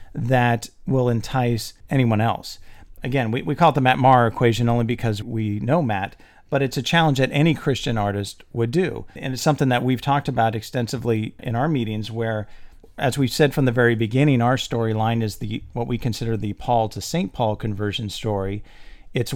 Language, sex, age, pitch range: English, male, 40-59, 110-135 Hz